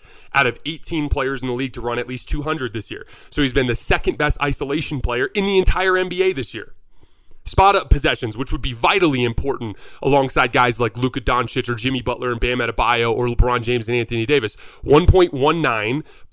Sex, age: male, 30-49